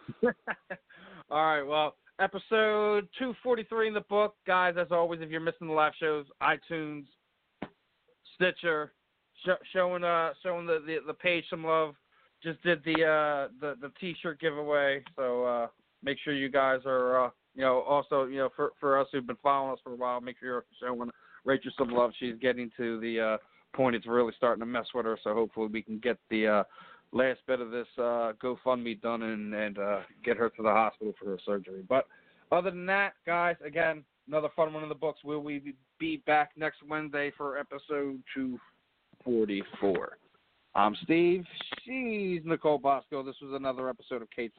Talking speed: 190 wpm